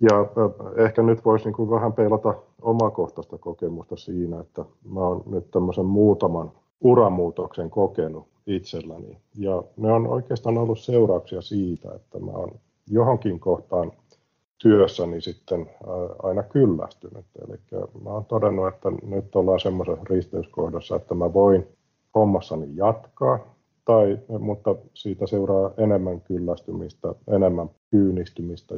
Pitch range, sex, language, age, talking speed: 85-110 Hz, male, Finnish, 50-69, 120 wpm